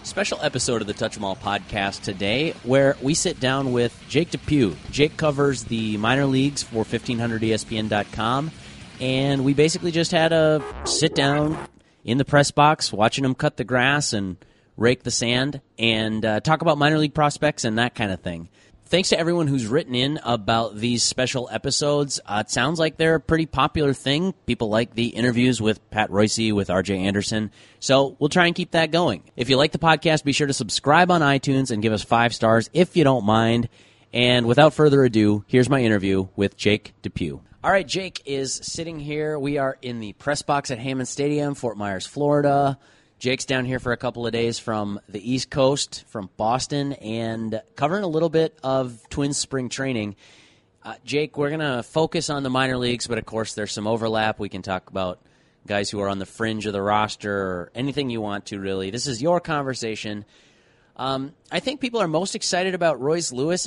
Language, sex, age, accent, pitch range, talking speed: English, male, 30-49, American, 110-150 Hz, 200 wpm